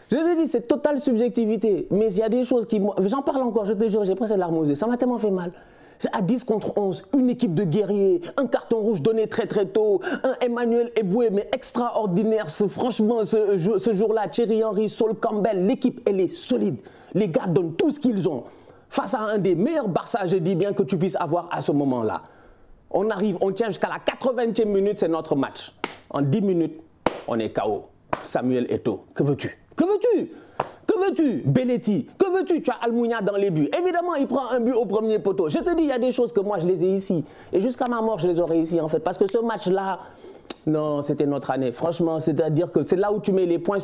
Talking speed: 230 wpm